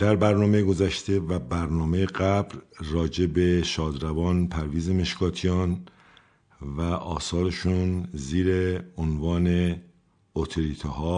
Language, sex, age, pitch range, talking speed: Persian, male, 50-69, 80-100 Hz, 80 wpm